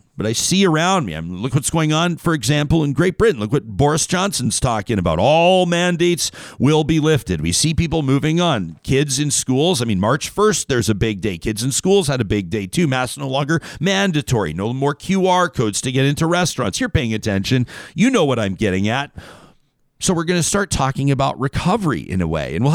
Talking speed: 220 wpm